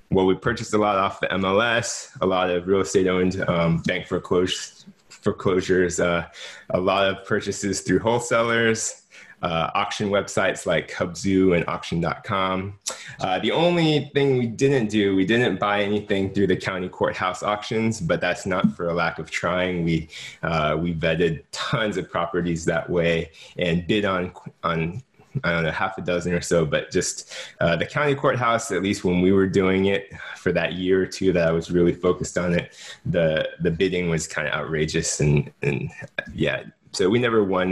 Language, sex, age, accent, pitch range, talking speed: English, male, 20-39, American, 85-105 Hz, 185 wpm